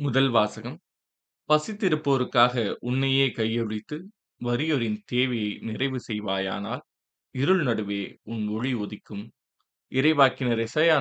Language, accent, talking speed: Tamil, native, 85 wpm